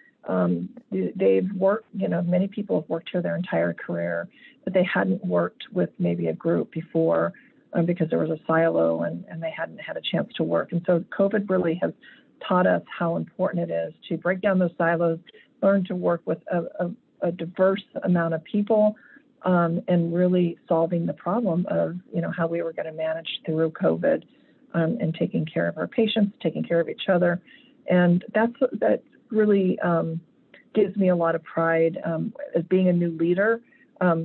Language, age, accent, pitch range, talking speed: English, 40-59, American, 160-190 Hz, 195 wpm